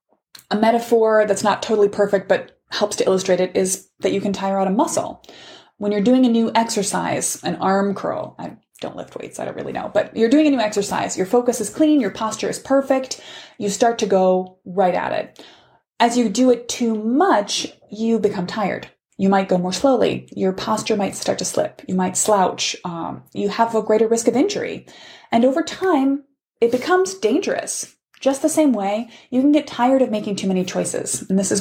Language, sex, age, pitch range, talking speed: English, female, 20-39, 195-250 Hz, 210 wpm